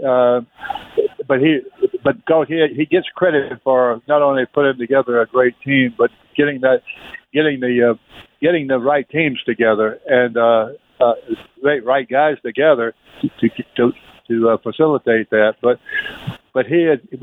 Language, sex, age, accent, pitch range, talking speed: English, male, 60-79, American, 120-150 Hz, 155 wpm